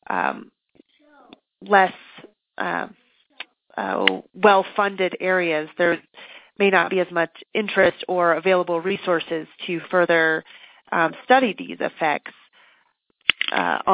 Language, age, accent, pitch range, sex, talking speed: English, 30-49, American, 175-205 Hz, female, 105 wpm